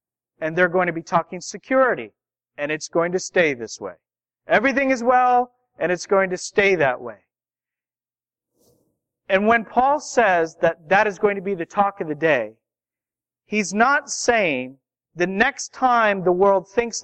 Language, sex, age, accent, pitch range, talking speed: English, male, 40-59, American, 165-220 Hz, 170 wpm